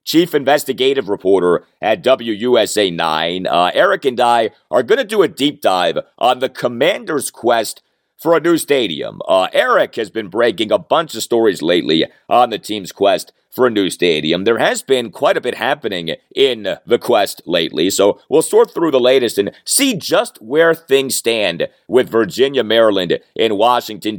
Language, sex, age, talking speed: English, male, 40-59, 175 wpm